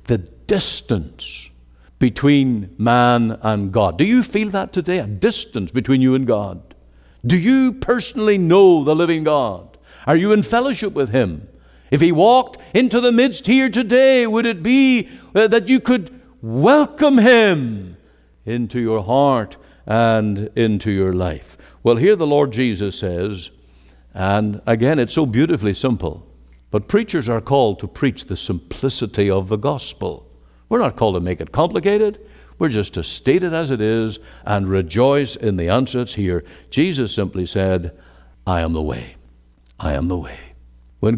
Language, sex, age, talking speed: English, male, 60-79, 160 wpm